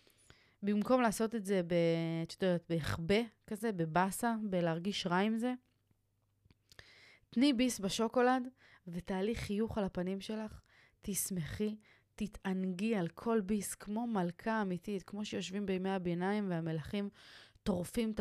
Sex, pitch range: female, 165-205 Hz